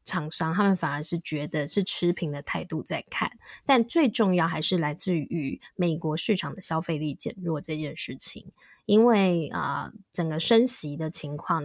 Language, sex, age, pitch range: Chinese, female, 20-39, 160-210 Hz